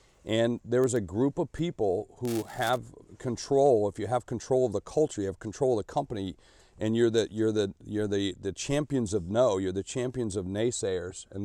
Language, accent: English, American